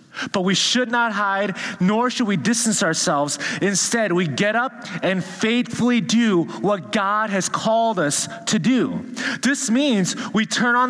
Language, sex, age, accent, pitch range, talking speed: English, male, 30-49, American, 190-245 Hz, 160 wpm